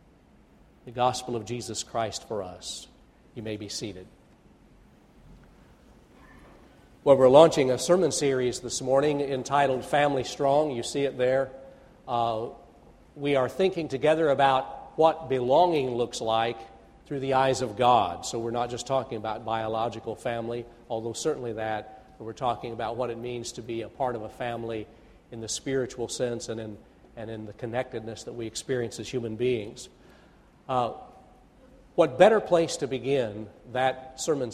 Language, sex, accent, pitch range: English, male, American, 115-140 Hz